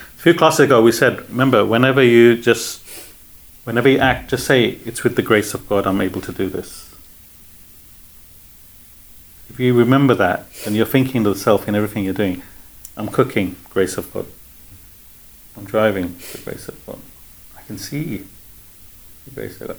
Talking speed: 160 wpm